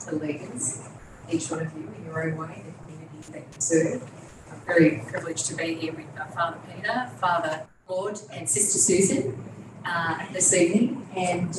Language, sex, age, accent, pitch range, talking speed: English, female, 30-49, Australian, 145-175 Hz, 170 wpm